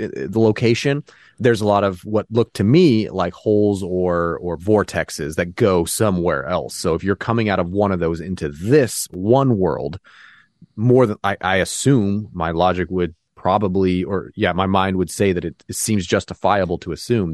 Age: 30-49